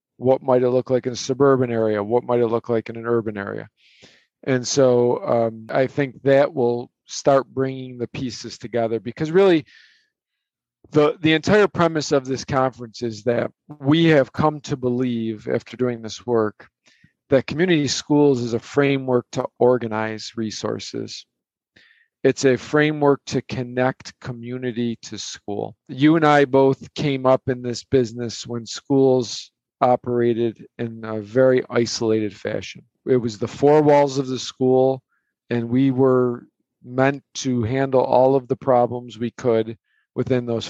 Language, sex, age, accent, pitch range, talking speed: English, male, 40-59, American, 115-135 Hz, 155 wpm